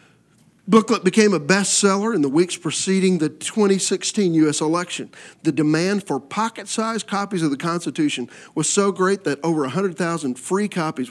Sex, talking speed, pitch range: male, 150 wpm, 150-200 Hz